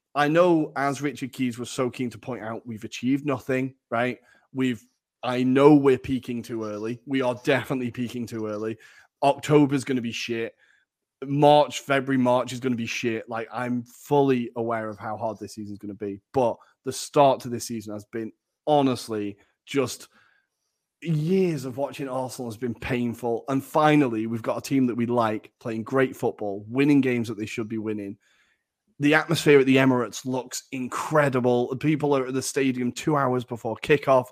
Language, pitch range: English, 115-140 Hz